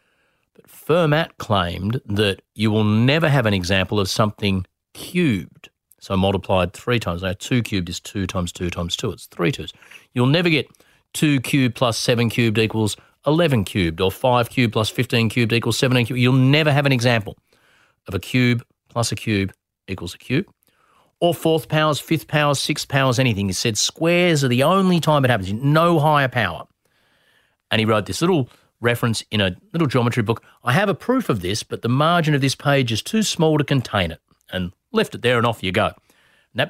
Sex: male